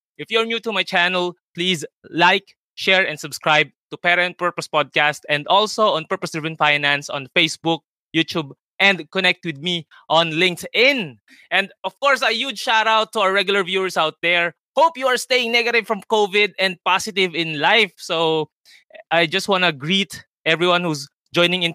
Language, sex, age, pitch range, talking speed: Filipino, male, 20-39, 155-200 Hz, 175 wpm